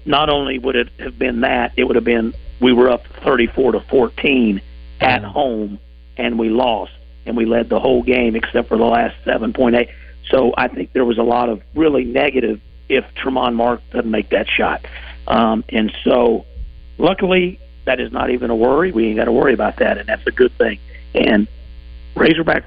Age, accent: 50-69, American